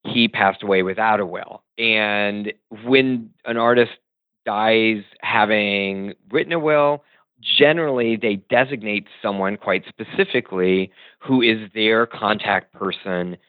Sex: male